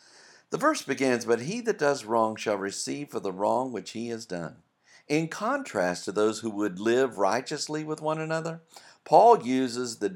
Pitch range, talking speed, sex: 100-135 Hz, 185 wpm, male